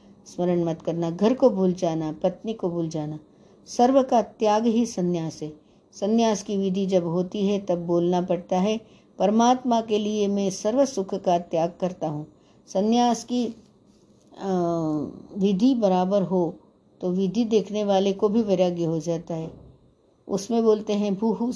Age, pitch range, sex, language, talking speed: 60-79, 180-220 Hz, female, Hindi, 155 wpm